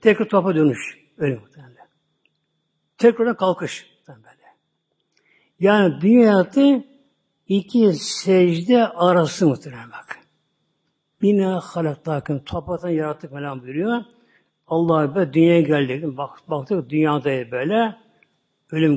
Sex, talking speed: male, 100 wpm